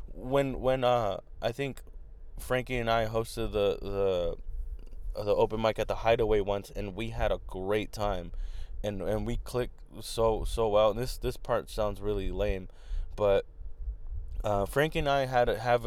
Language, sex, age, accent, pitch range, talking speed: English, male, 20-39, American, 95-125 Hz, 175 wpm